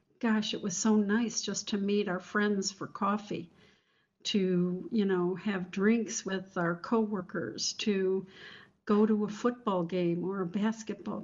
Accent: American